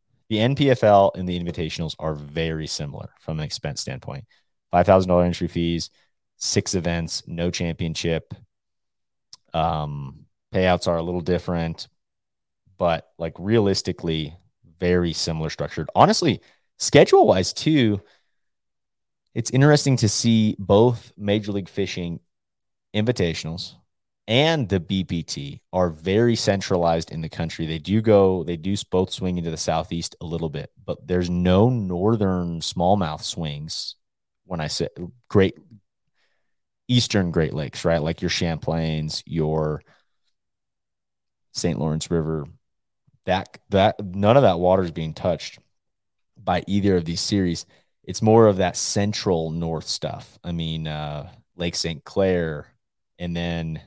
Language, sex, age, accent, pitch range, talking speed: English, male, 30-49, American, 80-100 Hz, 130 wpm